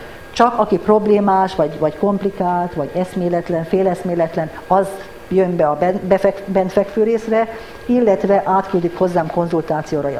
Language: Hungarian